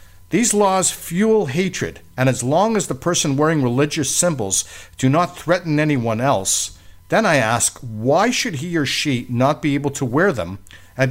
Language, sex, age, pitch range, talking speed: English, male, 50-69, 115-175 Hz, 180 wpm